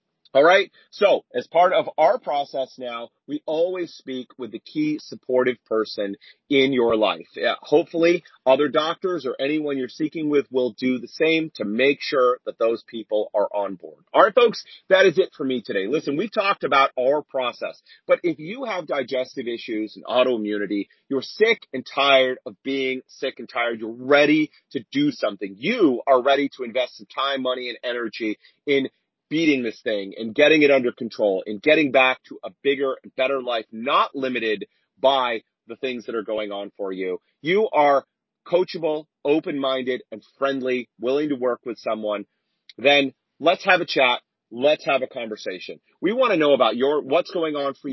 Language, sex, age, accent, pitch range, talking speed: English, male, 40-59, American, 125-160 Hz, 185 wpm